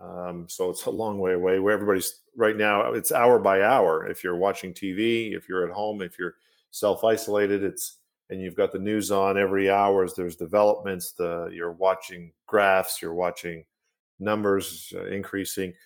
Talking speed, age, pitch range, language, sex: 225 wpm, 50-69, 95-115 Hz, English, male